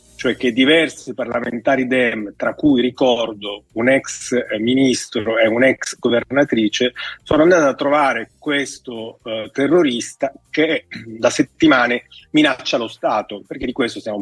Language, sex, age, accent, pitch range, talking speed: Italian, male, 30-49, native, 120-155 Hz, 130 wpm